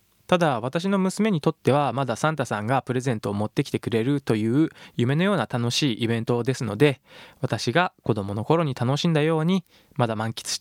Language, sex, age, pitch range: Japanese, male, 20-39, 115-160 Hz